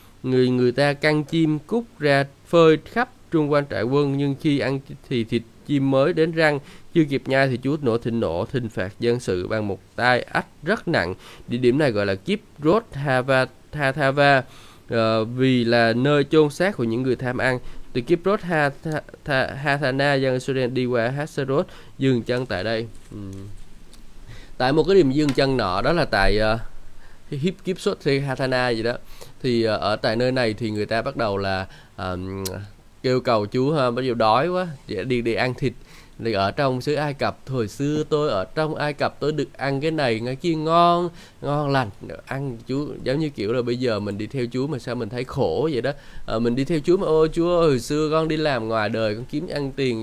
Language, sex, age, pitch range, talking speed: Vietnamese, male, 20-39, 115-150 Hz, 200 wpm